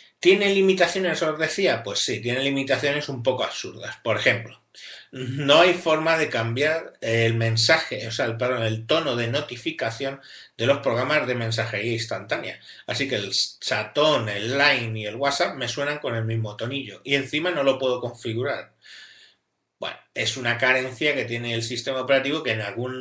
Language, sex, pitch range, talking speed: Spanish, male, 115-145 Hz, 175 wpm